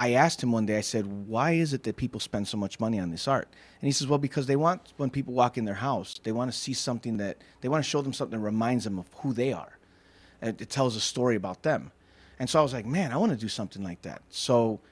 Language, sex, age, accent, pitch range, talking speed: English, male, 30-49, American, 105-135 Hz, 285 wpm